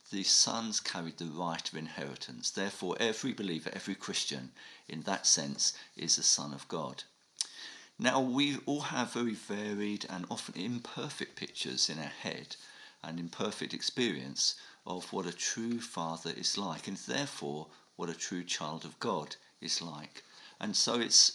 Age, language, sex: 50-69, English, male